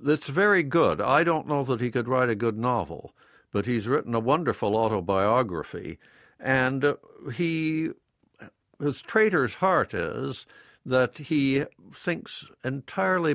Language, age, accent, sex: English, 60-79, American, male